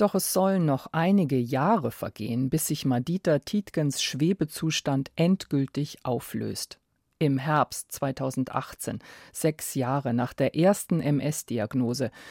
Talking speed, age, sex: 110 wpm, 50-69, female